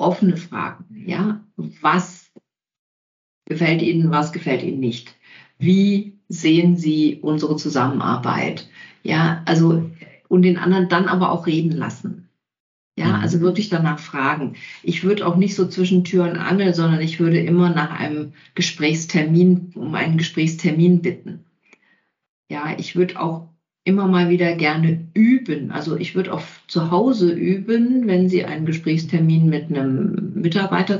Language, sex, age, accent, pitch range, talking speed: German, female, 50-69, German, 160-185 Hz, 140 wpm